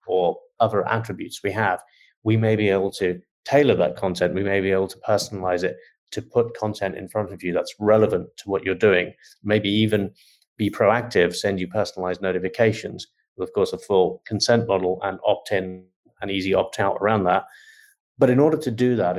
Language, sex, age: English, male, 30-49